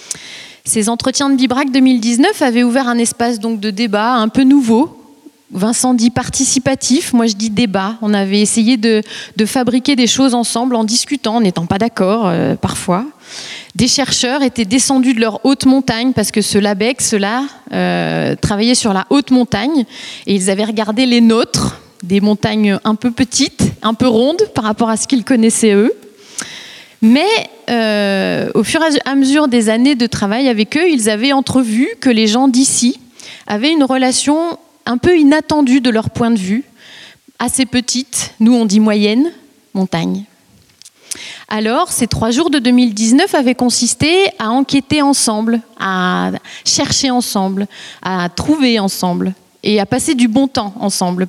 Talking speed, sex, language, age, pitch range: 165 wpm, female, French, 30-49, 215-265 Hz